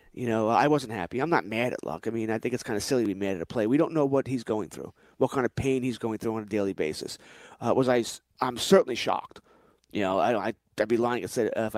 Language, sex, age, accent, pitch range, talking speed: English, male, 30-49, American, 115-150 Hz, 280 wpm